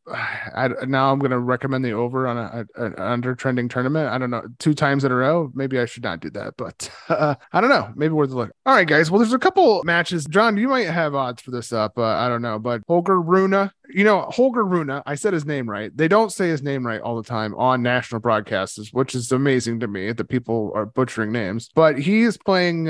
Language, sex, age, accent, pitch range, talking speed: English, male, 30-49, American, 120-155 Hz, 245 wpm